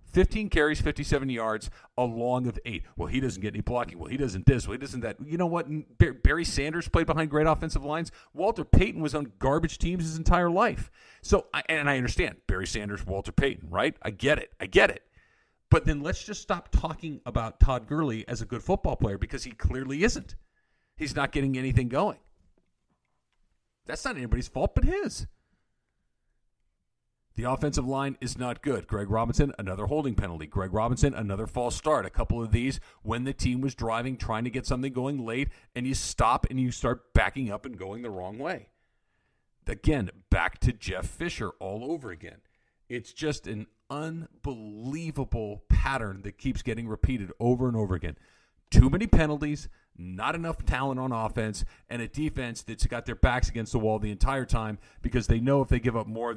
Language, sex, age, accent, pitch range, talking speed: English, male, 50-69, American, 105-140 Hz, 190 wpm